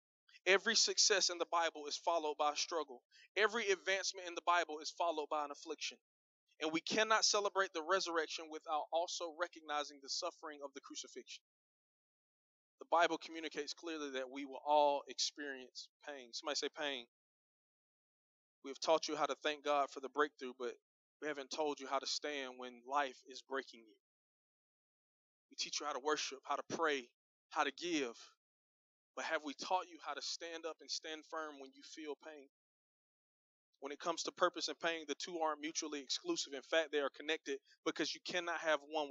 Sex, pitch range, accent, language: male, 145-170 Hz, American, English